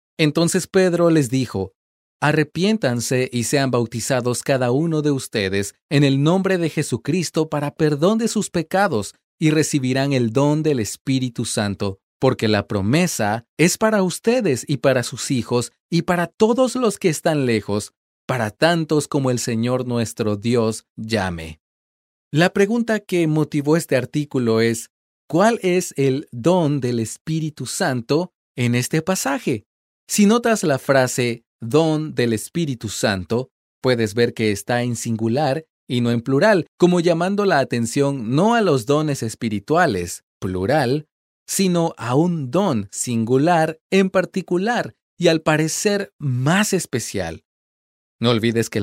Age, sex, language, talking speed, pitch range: 30-49, male, Spanish, 140 wpm, 120-170 Hz